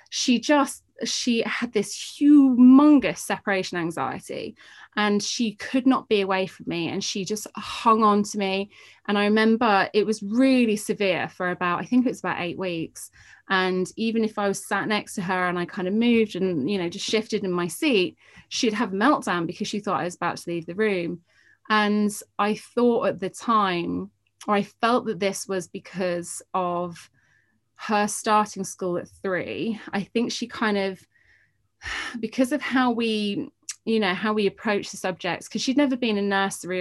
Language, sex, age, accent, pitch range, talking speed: English, female, 30-49, British, 185-225 Hz, 190 wpm